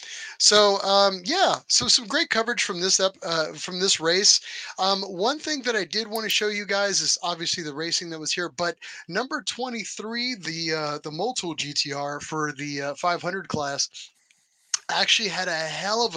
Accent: American